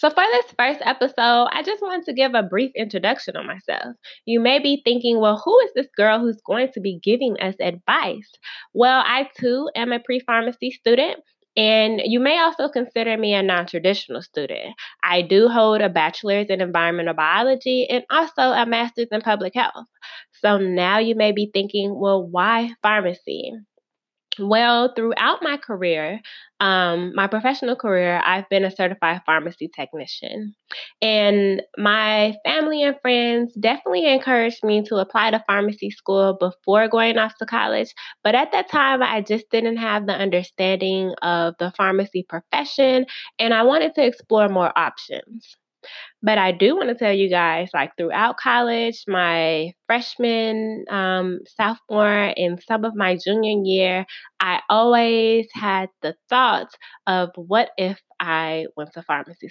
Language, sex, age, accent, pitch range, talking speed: English, female, 20-39, American, 190-240 Hz, 160 wpm